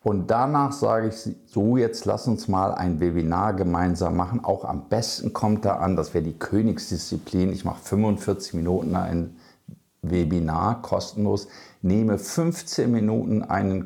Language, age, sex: German, 50-69, male